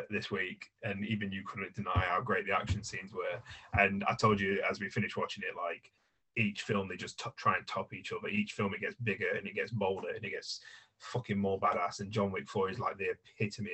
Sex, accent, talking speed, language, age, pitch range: male, British, 245 wpm, English, 30-49, 100-110 Hz